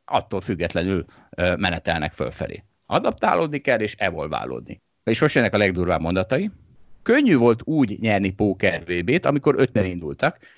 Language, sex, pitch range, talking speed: Hungarian, male, 95-130 Hz, 120 wpm